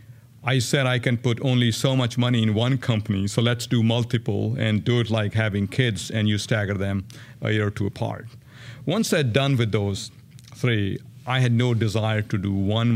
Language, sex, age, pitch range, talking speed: English, male, 50-69, 110-125 Hz, 205 wpm